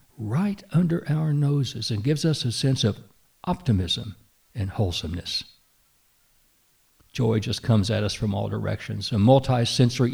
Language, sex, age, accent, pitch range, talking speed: English, male, 60-79, American, 105-125 Hz, 135 wpm